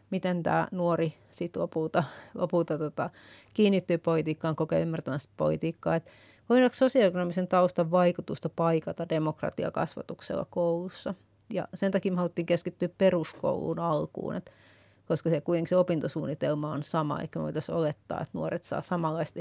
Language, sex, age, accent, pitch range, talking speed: Finnish, female, 30-49, native, 155-185 Hz, 125 wpm